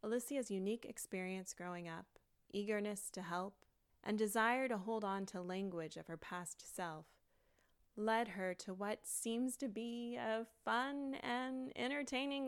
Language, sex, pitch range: English, female, 170-220 Hz